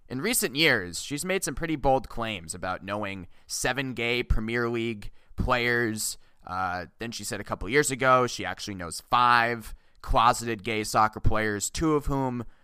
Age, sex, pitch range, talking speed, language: 20-39, male, 105-130 Hz, 165 wpm, English